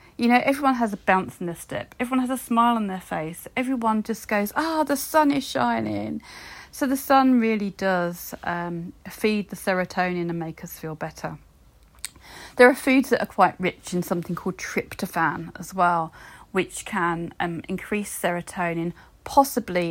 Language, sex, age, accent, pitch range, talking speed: English, female, 40-59, British, 170-225 Hz, 175 wpm